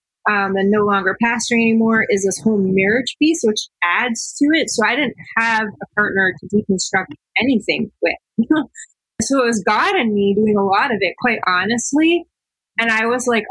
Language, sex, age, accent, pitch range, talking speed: English, female, 20-39, American, 195-230 Hz, 185 wpm